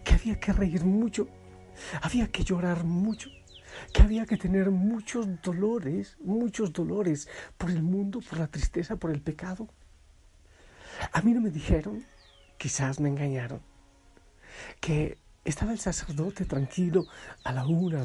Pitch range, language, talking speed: 135-190 Hz, Spanish, 140 wpm